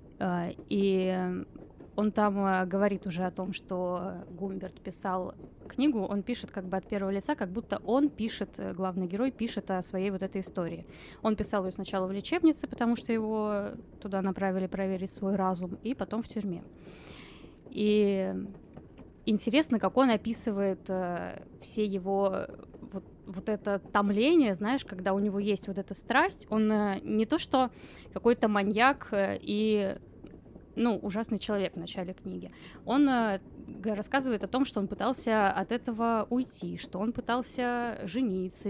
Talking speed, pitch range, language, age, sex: 145 wpm, 190-230 Hz, Russian, 20-39, female